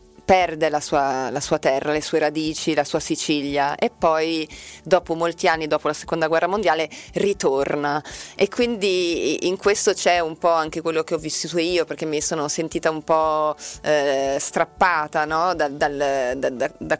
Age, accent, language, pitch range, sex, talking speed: 30-49, native, Italian, 150-170 Hz, female, 160 wpm